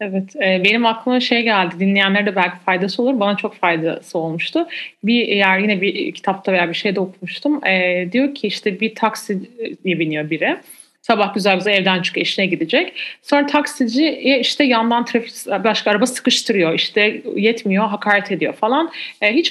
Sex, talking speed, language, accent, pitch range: female, 160 wpm, Turkish, native, 190-270 Hz